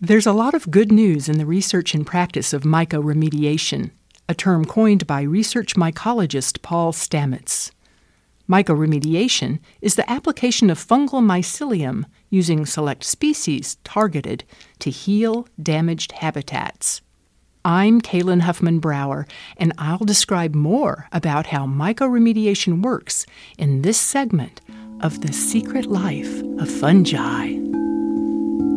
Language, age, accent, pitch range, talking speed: English, 50-69, American, 155-225 Hz, 120 wpm